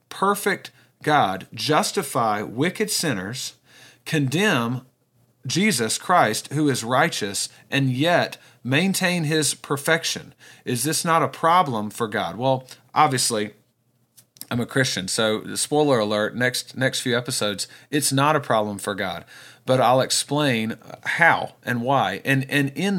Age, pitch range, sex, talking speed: 40-59, 120-150 Hz, male, 130 wpm